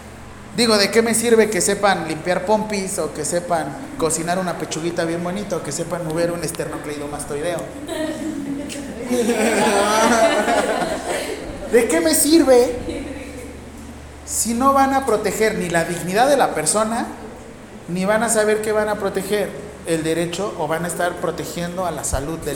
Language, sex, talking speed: Spanish, male, 150 wpm